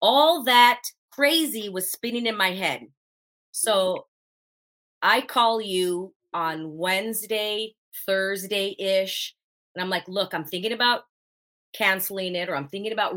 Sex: female